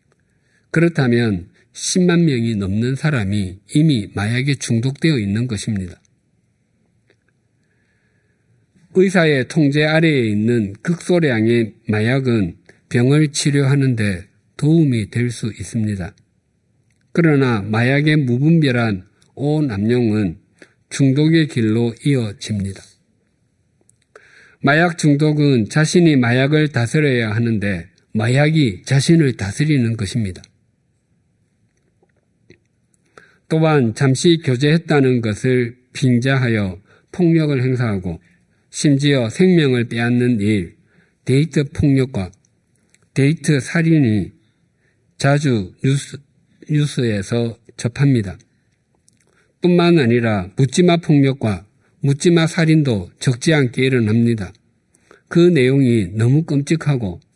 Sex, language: male, Korean